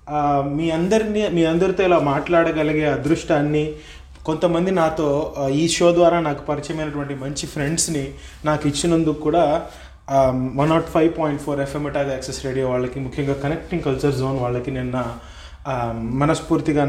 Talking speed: 130 wpm